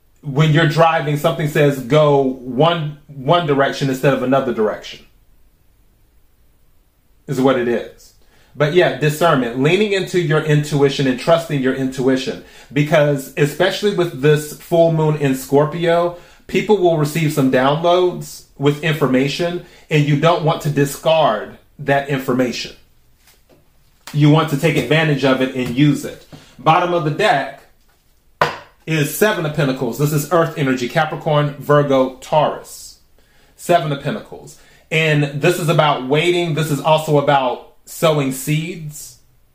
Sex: male